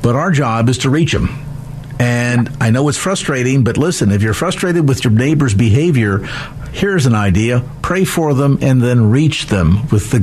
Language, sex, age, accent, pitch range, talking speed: English, male, 50-69, American, 130-170 Hz, 195 wpm